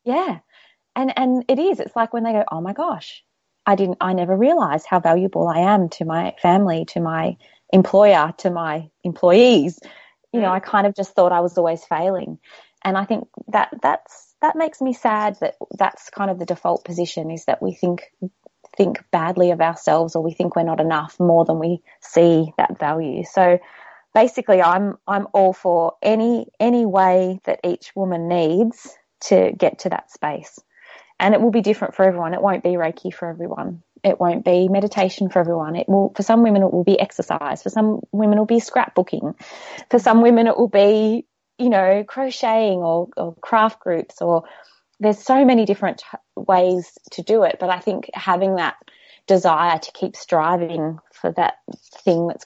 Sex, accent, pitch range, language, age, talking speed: female, Australian, 170-215 Hz, English, 20-39, 190 wpm